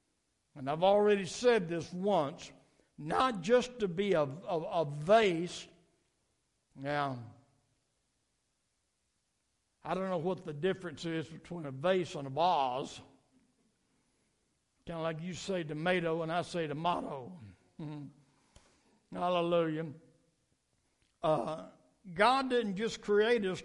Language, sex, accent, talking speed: English, male, American, 115 wpm